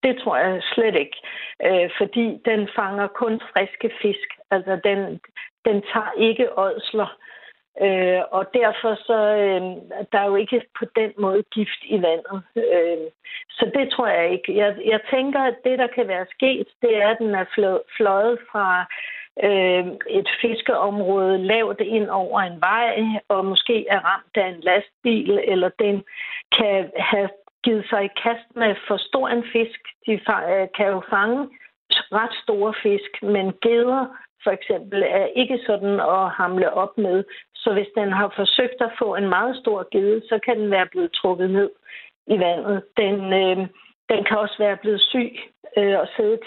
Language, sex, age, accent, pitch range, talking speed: Danish, female, 60-79, native, 195-235 Hz, 165 wpm